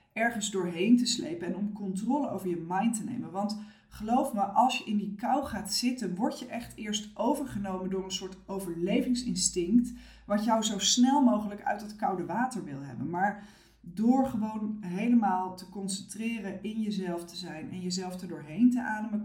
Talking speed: 180 wpm